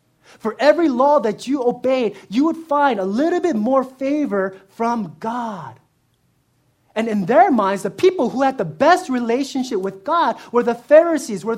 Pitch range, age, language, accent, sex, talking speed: 195-255 Hz, 30-49, English, American, male, 170 wpm